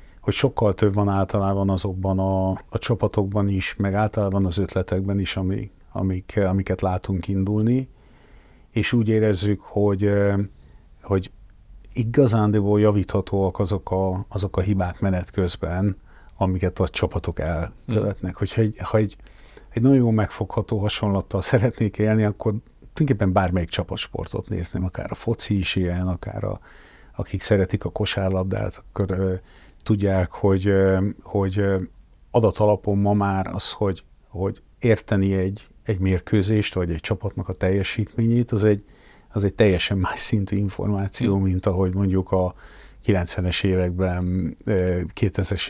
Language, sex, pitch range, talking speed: Hungarian, male, 95-105 Hz, 125 wpm